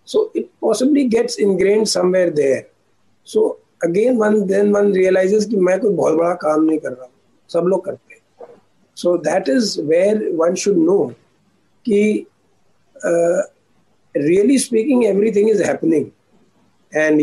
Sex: male